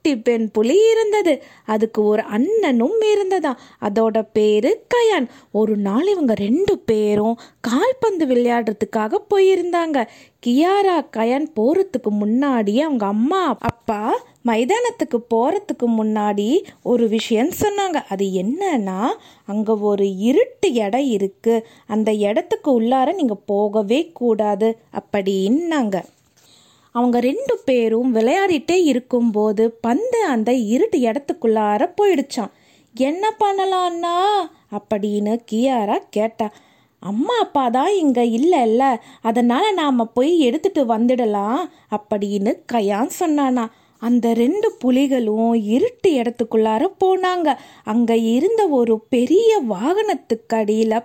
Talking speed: 100 wpm